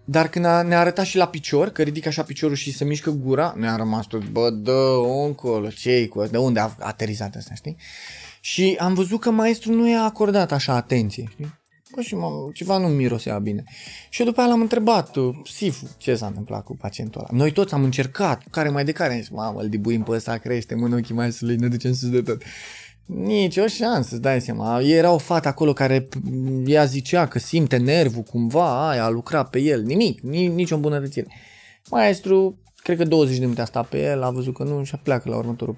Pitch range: 115-155 Hz